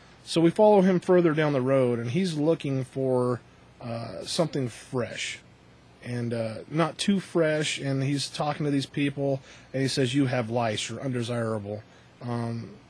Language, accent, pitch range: English, American, 120-150 Hz